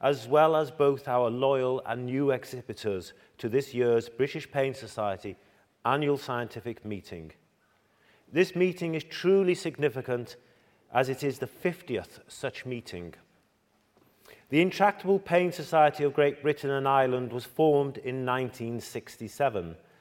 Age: 40-59